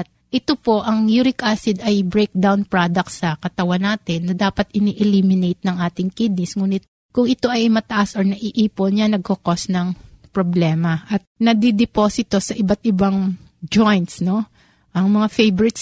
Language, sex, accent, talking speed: Filipino, female, native, 145 wpm